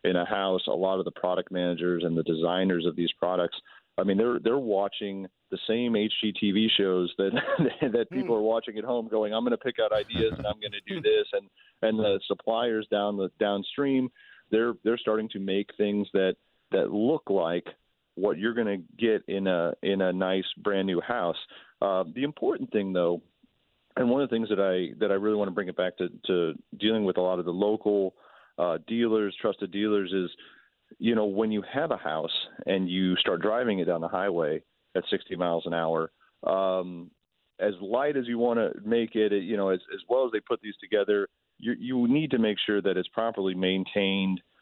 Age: 40-59